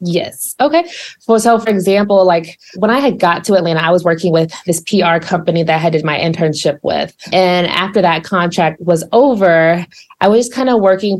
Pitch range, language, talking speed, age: 170-200 Hz, English, 200 wpm, 20-39